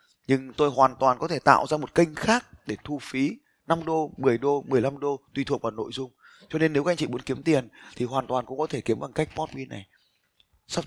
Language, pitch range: Vietnamese, 125-160 Hz